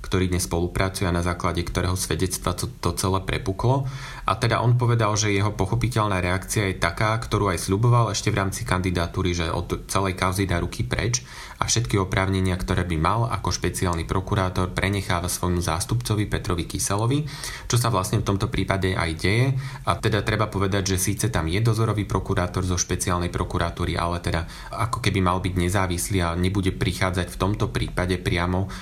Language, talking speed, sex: Slovak, 175 wpm, male